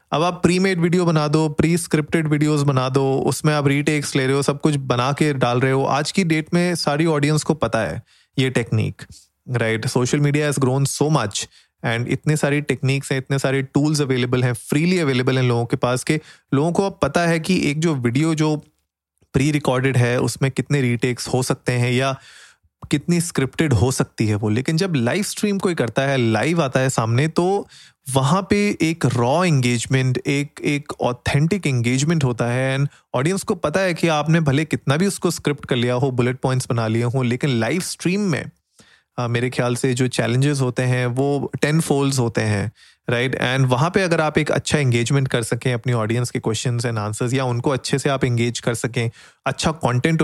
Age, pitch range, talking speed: 30-49, 120-155 Hz, 205 wpm